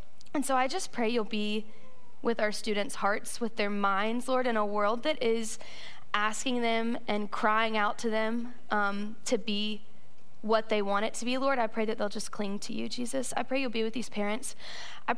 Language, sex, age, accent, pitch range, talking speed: English, female, 10-29, American, 210-235 Hz, 215 wpm